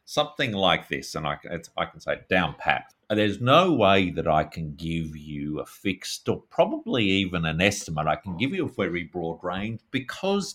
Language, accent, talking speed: English, Australian, 200 wpm